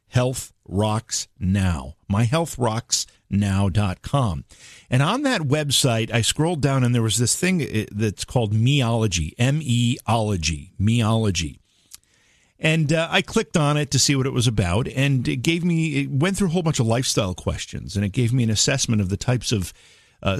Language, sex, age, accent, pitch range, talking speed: English, male, 50-69, American, 100-135 Hz, 175 wpm